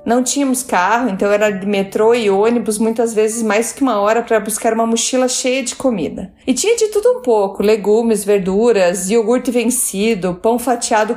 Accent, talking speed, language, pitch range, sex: Brazilian, 185 wpm, Portuguese, 215-265 Hz, female